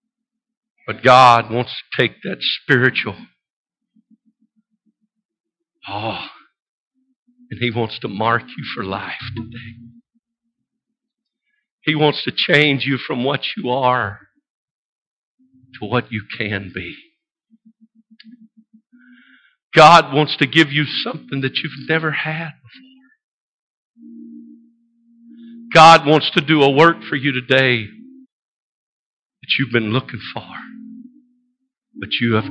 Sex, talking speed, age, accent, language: male, 110 wpm, 50-69, American, English